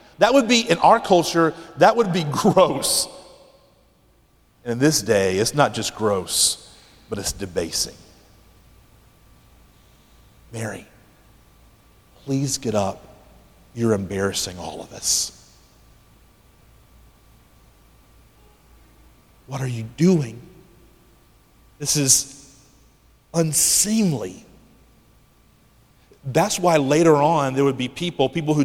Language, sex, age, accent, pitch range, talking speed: English, male, 40-59, American, 105-160 Hz, 95 wpm